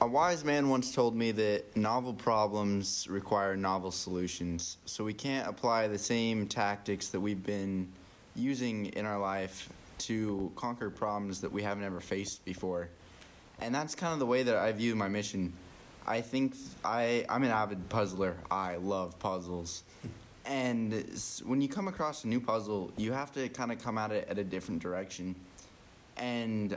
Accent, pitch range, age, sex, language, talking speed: American, 95-120 Hz, 20-39, male, English, 170 wpm